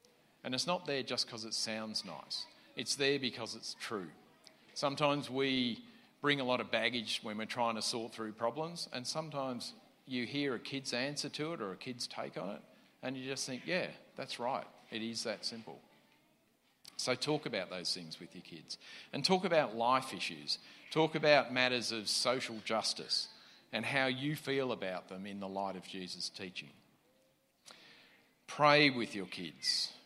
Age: 40-59